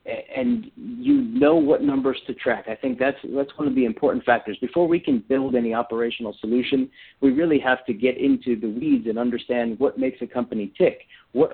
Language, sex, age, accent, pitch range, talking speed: English, male, 50-69, American, 115-135 Hz, 205 wpm